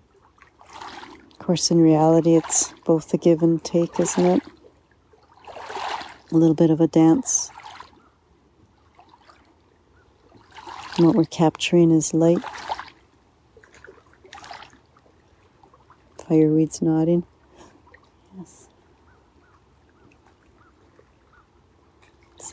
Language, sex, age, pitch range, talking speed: English, female, 60-79, 160-180 Hz, 70 wpm